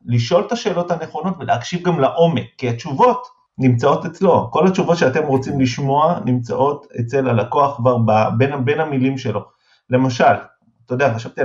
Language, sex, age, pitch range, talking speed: Hebrew, male, 30-49, 120-160 Hz, 140 wpm